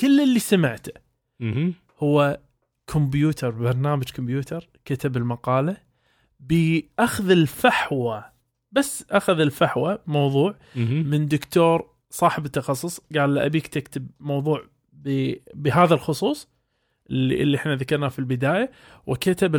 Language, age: Arabic, 20-39